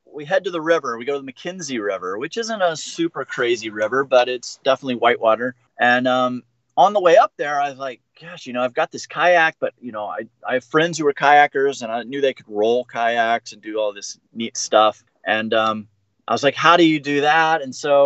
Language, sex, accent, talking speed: English, male, American, 245 wpm